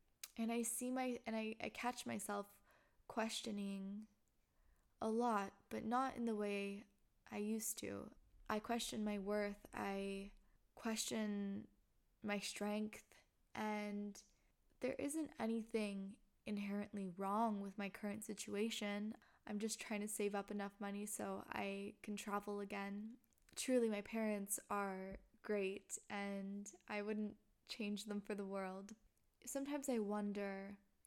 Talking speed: 130 wpm